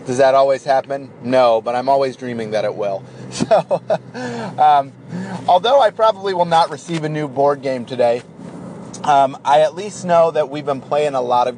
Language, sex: English, male